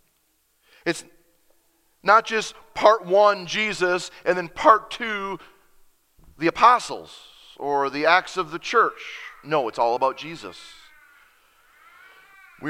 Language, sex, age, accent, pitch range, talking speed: English, male, 40-59, American, 155-220 Hz, 115 wpm